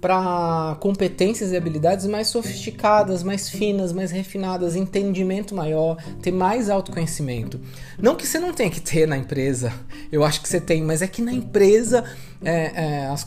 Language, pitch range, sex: Portuguese, 135-180 Hz, male